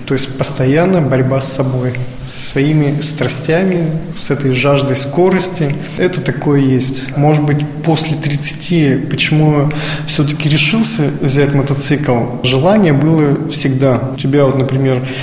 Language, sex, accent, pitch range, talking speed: Russian, male, native, 140-160 Hz, 130 wpm